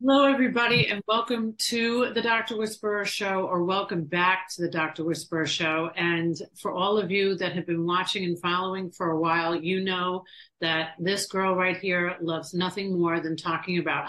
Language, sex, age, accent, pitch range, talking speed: English, female, 40-59, American, 170-205 Hz, 185 wpm